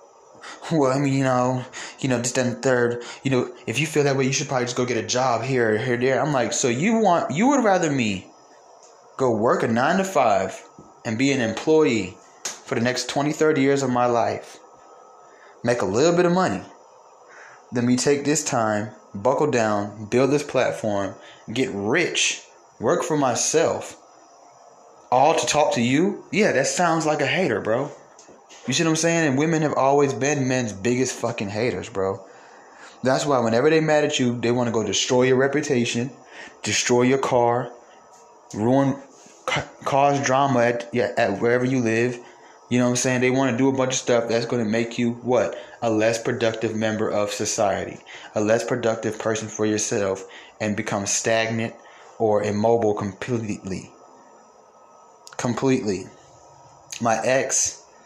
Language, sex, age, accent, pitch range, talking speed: English, male, 20-39, American, 115-135 Hz, 175 wpm